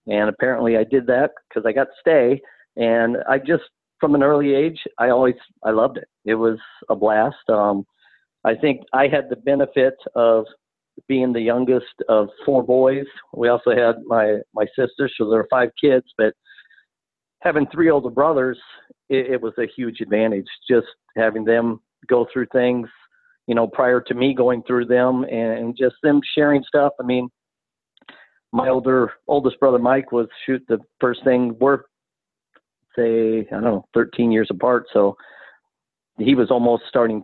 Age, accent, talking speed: 50-69, American, 170 wpm